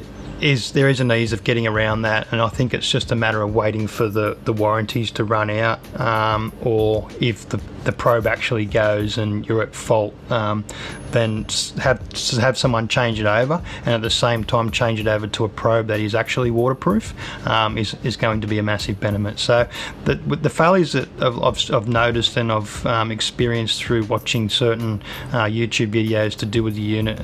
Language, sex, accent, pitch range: English, male, Australian, 110-120 Hz